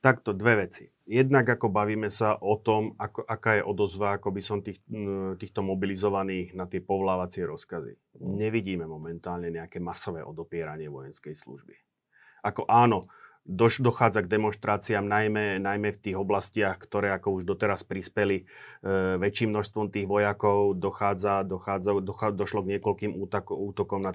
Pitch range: 95-105 Hz